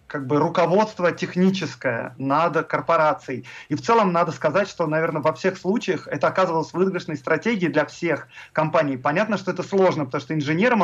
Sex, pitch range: male, 150-185 Hz